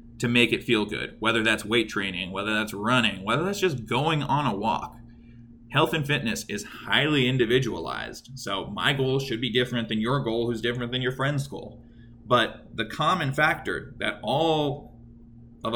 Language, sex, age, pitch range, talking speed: English, male, 20-39, 115-130 Hz, 180 wpm